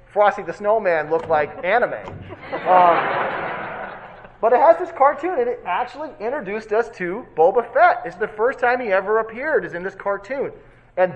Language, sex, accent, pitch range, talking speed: English, male, American, 160-225 Hz, 170 wpm